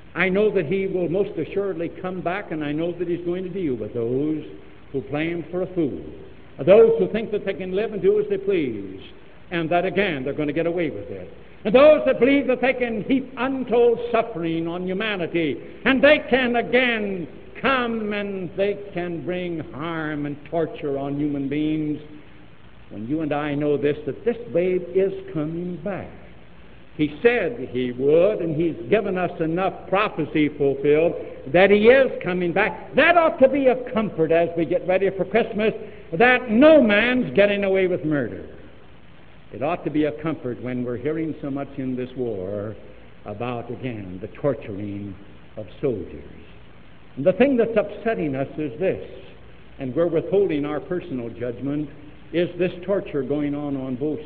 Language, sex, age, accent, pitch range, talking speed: English, male, 70-89, American, 145-205 Hz, 175 wpm